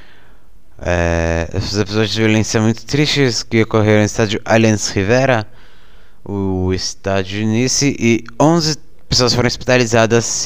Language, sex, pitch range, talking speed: Portuguese, male, 95-115 Hz, 125 wpm